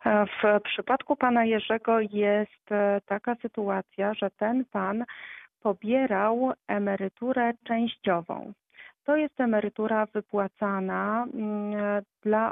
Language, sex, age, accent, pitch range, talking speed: Polish, female, 40-59, native, 195-230 Hz, 85 wpm